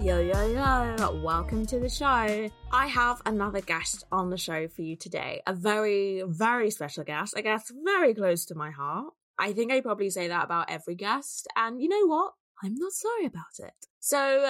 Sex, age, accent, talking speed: female, 20-39, British, 200 wpm